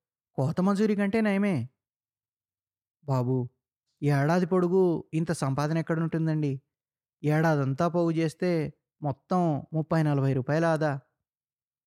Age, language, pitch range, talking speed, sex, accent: 20-39, Telugu, 135-180 Hz, 85 wpm, male, native